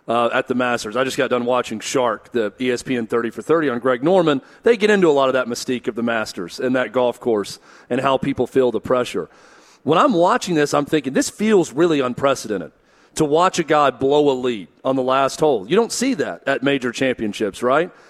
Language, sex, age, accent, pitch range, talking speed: English, male, 40-59, American, 130-160 Hz, 225 wpm